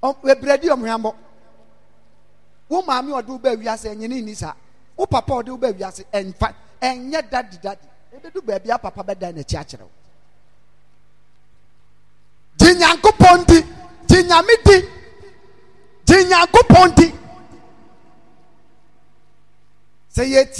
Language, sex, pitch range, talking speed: English, male, 185-285 Hz, 115 wpm